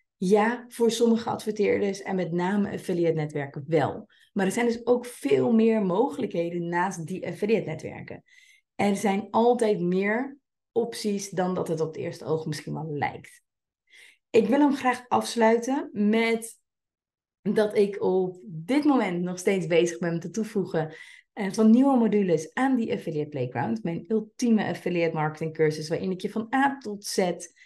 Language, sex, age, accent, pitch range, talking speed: Dutch, female, 30-49, Dutch, 175-225 Hz, 155 wpm